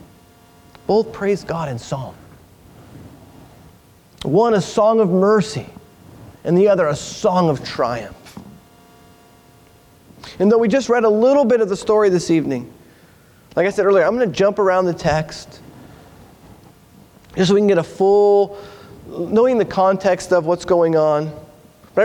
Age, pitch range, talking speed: 30-49, 170-230 Hz, 150 wpm